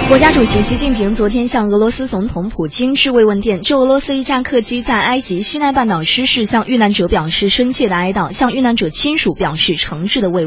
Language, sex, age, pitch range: Chinese, female, 20-39, 195-260 Hz